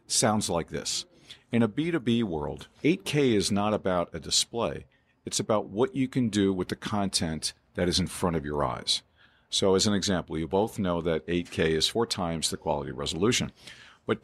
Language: English